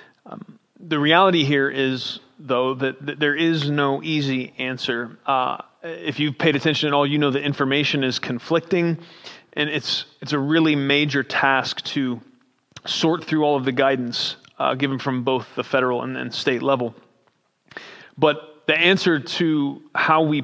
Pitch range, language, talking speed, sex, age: 130-155 Hz, English, 160 wpm, male, 30-49